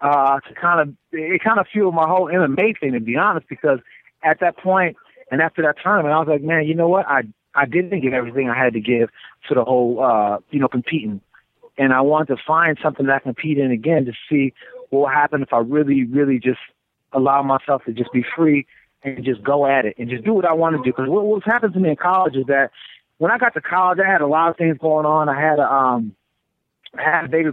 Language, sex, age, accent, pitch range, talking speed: English, male, 30-49, American, 140-175 Hz, 255 wpm